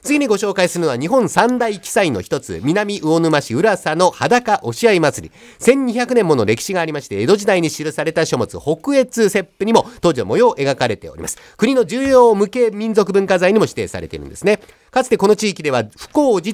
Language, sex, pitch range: Japanese, male, 155-230 Hz